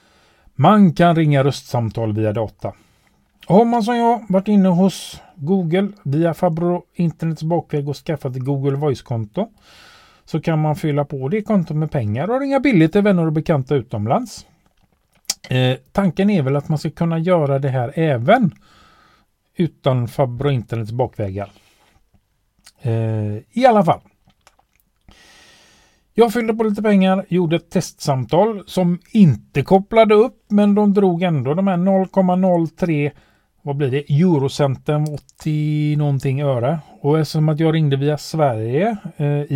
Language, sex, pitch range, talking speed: Swedish, male, 140-190 Hz, 135 wpm